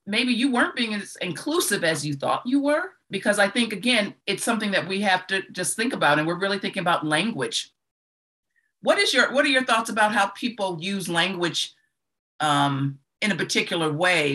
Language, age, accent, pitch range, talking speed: English, 50-69, American, 155-215 Hz, 195 wpm